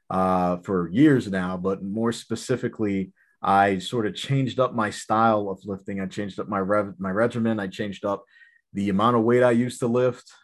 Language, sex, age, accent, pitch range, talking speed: English, male, 30-49, American, 105-125 Hz, 195 wpm